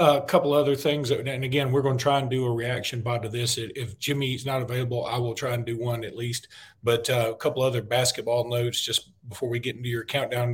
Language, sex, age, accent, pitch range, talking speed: English, male, 40-59, American, 110-130 Hz, 250 wpm